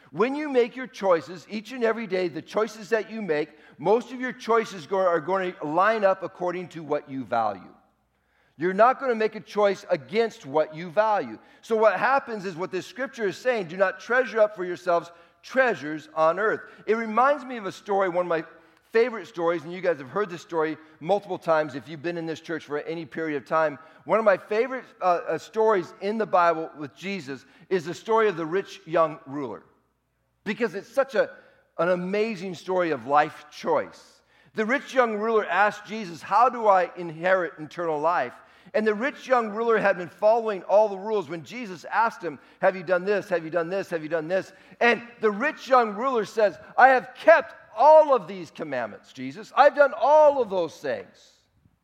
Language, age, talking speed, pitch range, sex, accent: English, 50-69, 205 wpm, 170-230 Hz, male, American